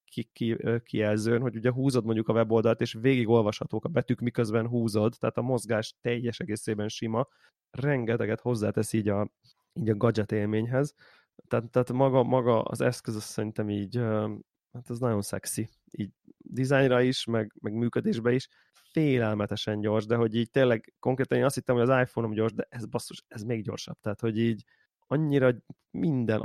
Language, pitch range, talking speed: Hungarian, 110-130 Hz, 165 wpm